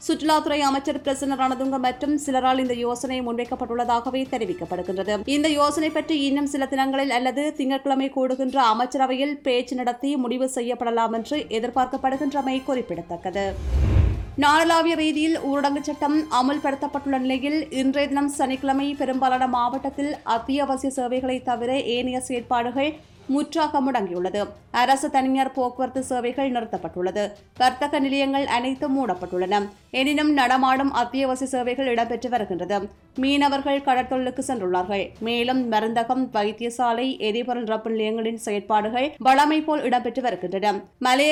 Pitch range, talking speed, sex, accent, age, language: 240-275 Hz, 105 wpm, female, Indian, 20-39, English